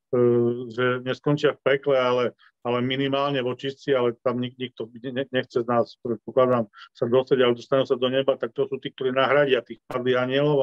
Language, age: Polish, 40-59